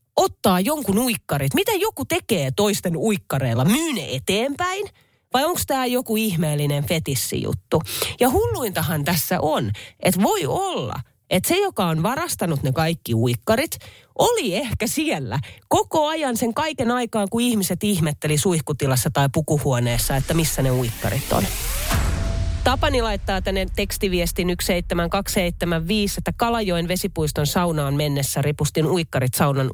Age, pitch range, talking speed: 30-49, 140-200 Hz, 125 wpm